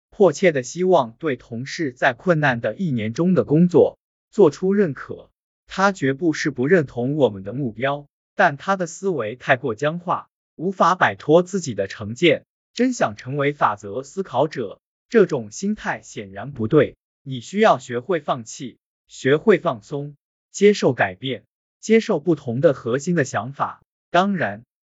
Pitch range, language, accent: 125-175 Hz, Chinese, native